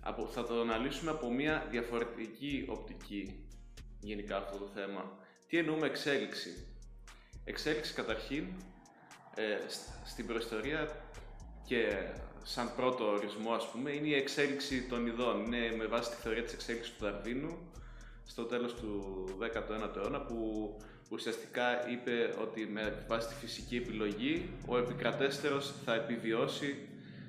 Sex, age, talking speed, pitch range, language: male, 20-39, 130 wpm, 110-130 Hz, Greek